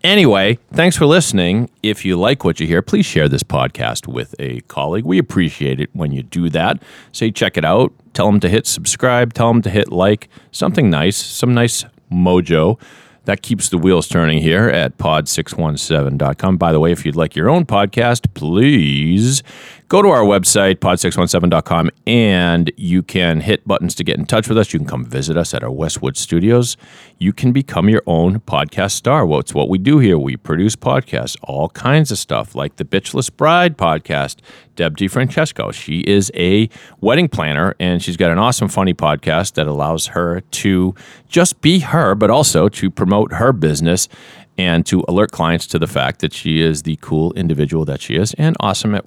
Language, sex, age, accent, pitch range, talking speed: English, male, 40-59, American, 80-120 Hz, 195 wpm